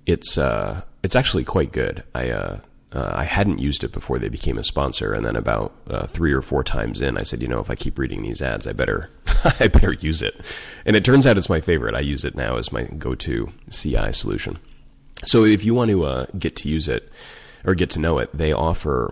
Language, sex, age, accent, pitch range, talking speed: English, male, 30-49, American, 65-90 Hz, 240 wpm